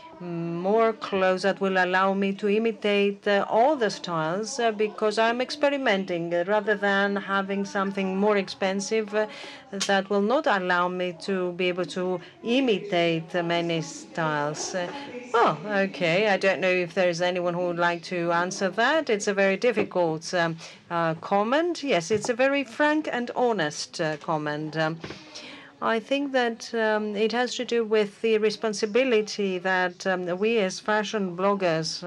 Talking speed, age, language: 160 wpm, 40-59, Greek